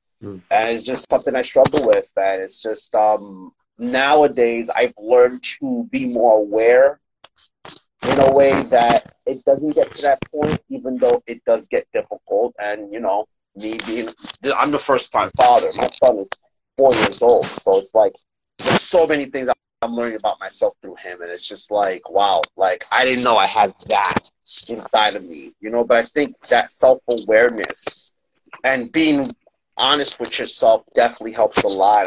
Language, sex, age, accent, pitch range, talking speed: English, male, 30-49, American, 110-175 Hz, 175 wpm